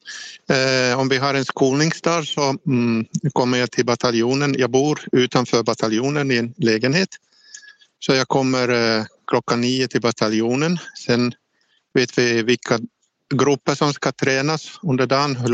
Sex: male